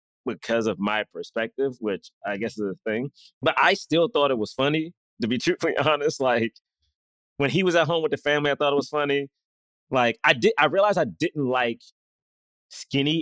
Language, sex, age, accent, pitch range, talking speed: English, male, 30-49, American, 115-155 Hz, 200 wpm